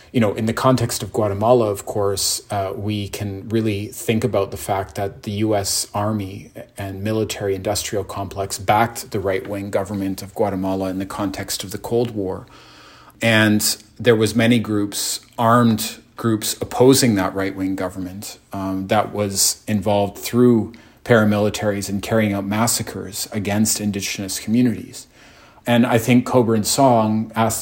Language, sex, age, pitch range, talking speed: English, male, 40-59, 100-115 Hz, 150 wpm